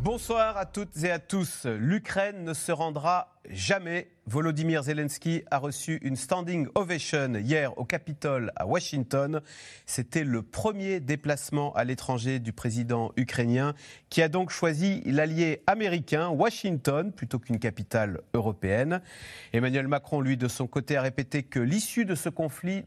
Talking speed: 145 wpm